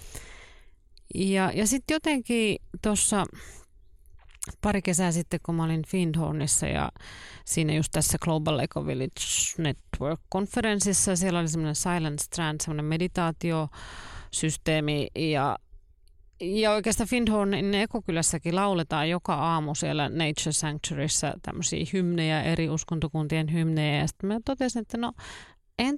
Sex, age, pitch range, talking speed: female, 30-49, 150-185 Hz, 110 wpm